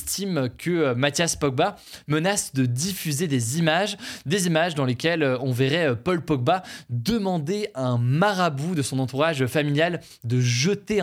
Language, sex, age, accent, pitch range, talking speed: French, male, 20-39, French, 130-165 Hz, 145 wpm